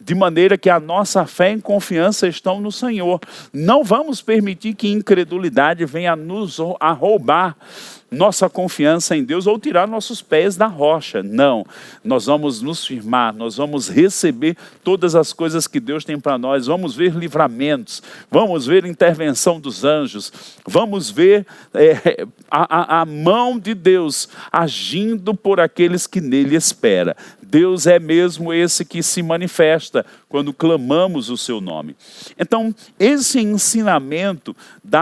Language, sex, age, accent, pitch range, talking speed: Portuguese, male, 50-69, Brazilian, 150-200 Hz, 140 wpm